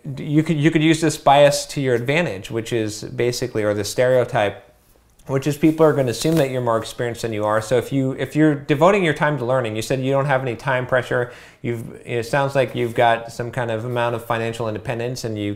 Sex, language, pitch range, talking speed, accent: male, English, 110-135 Hz, 245 wpm, American